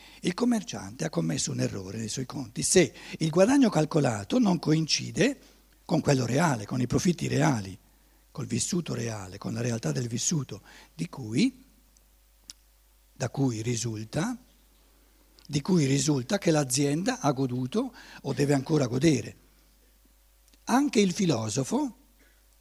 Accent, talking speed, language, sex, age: native, 130 wpm, Italian, male, 60-79